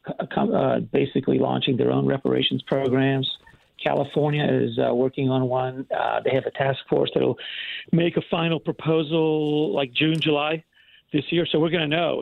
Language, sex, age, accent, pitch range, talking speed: English, male, 50-69, American, 130-160 Hz, 165 wpm